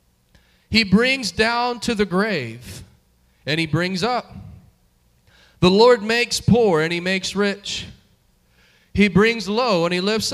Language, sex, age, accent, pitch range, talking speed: English, male, 40-59, American, 140-195 Hz, 140 wpm